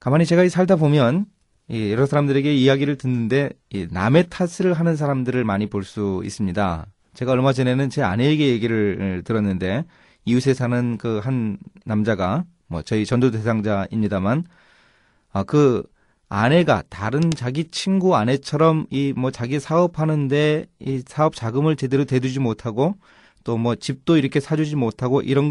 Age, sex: 30-49, male